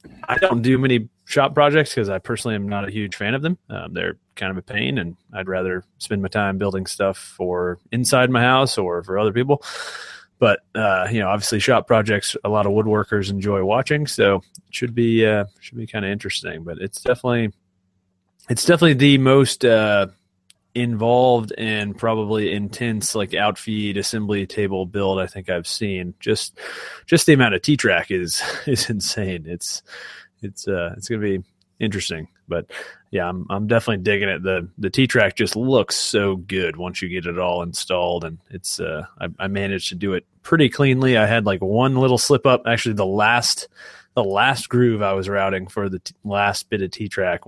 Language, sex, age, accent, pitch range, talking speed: English, male, 30-49, American, 95-120 Hz, 195 wpm